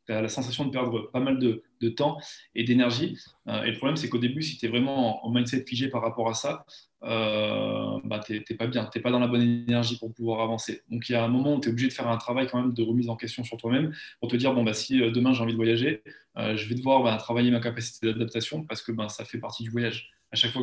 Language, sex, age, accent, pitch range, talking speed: French, male, 20-39, French, 115-130 Hz, 290 wpm